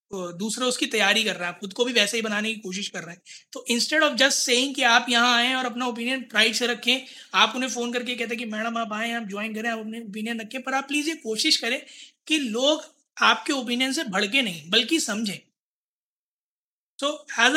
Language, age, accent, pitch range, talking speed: Hindi, 20-39, native, 215-260 Hz, 215 wpm